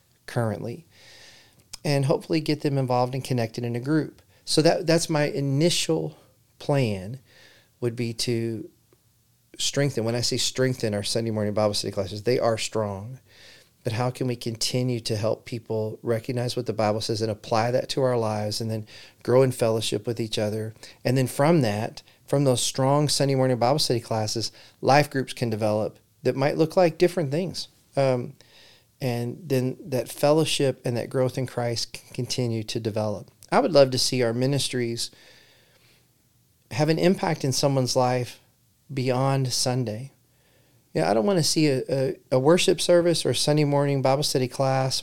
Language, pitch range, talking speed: English, 115-140 Hz, 175 wpm